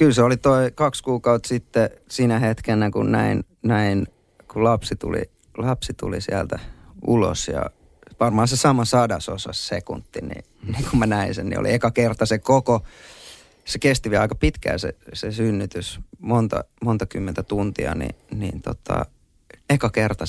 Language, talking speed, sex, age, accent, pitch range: Finnish, 160 wpm, male, 30-49, native, 100-125 Hz